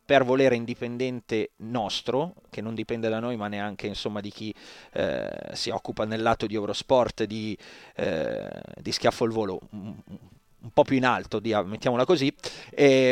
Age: 30-49